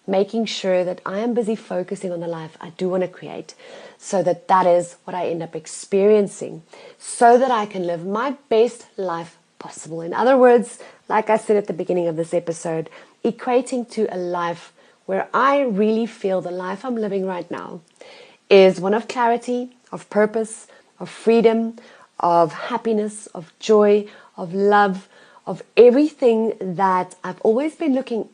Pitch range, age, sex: 180-240 Hz, 30-49, female